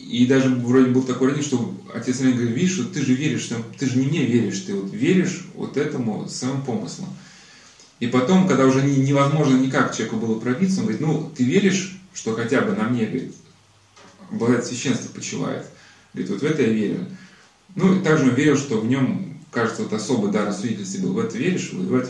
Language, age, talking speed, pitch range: Russian, 20-39, 215 wpm, 125-190 Hz